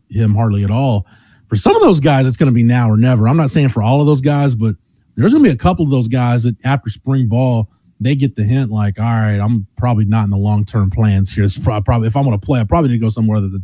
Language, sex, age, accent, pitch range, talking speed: English, male, 30-49, American, 110-135 Hz, 300 wpm